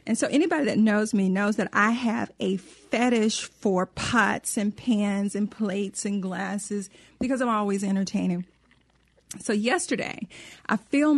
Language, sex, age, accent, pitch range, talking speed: English, female, 40-59, American, 200-245 Hz, 150 wpm